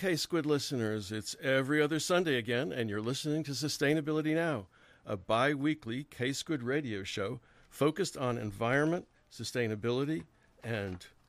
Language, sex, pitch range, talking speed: English, male, 115-155 Hz, 120 wpm